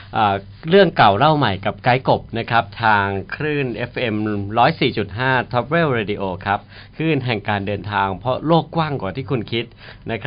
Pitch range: 105-130 Hz